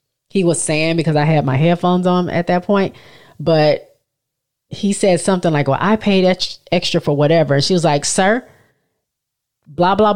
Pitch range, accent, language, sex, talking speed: 150-190 Hz, American, English, female, 170 wpm